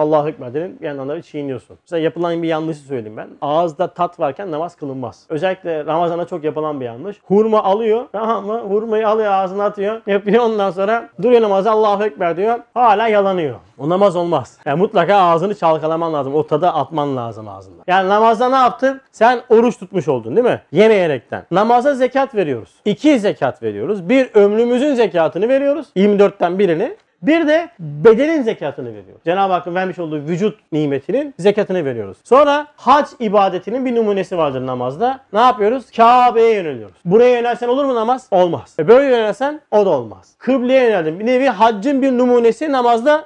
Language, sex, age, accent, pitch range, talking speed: Turkish, male, 40-59, native, 165-240 Hz, 165 wpm